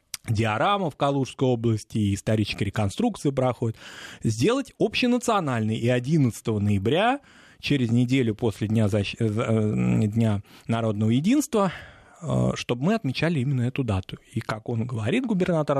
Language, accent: Russian, native